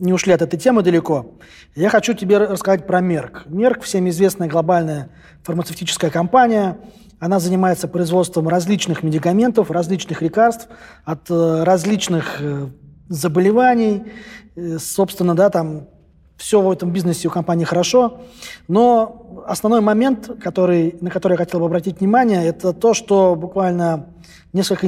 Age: 20-39